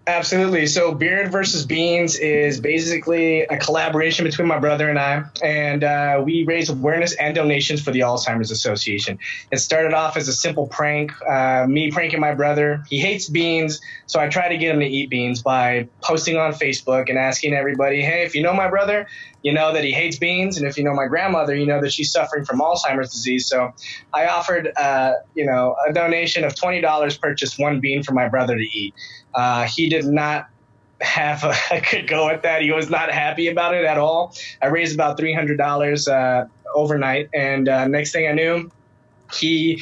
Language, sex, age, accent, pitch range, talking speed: English, male, 20-39, American, 140-165 Hz, 200 wpm